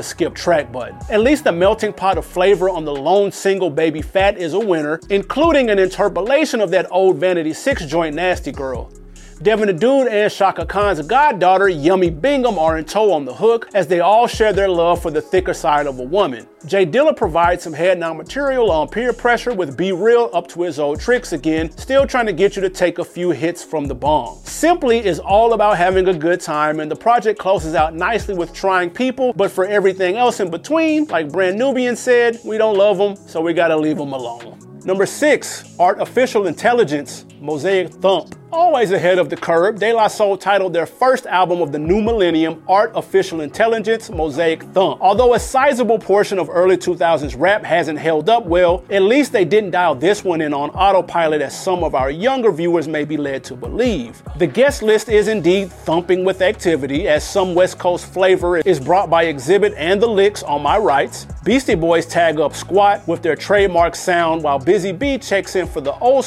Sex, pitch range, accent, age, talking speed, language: male, 165-215 Hz, American, 30-49, 205 wpm, English